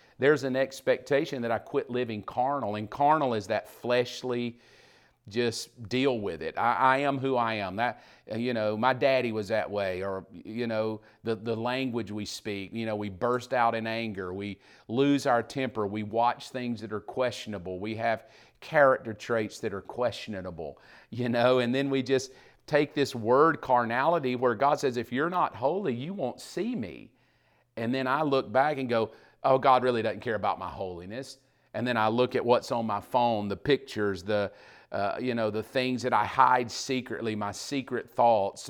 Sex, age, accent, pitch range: male, 40-59, American, 110-130 Hz